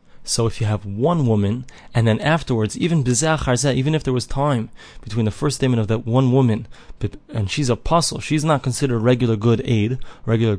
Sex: male